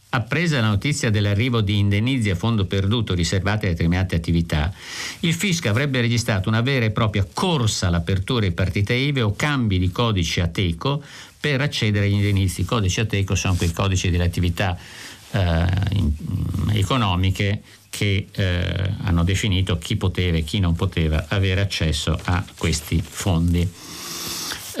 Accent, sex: native, male